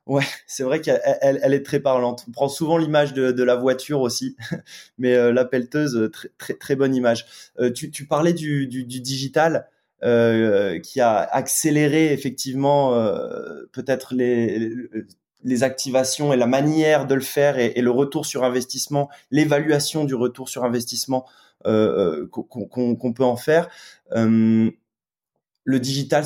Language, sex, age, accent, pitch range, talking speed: French, male, 20-39, French, 120-145 Hz, 160 wpm